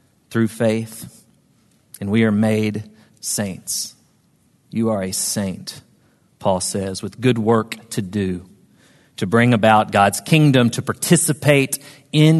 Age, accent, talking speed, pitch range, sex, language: 40-59, American, 125 wpm, 110-145 Hz, male, English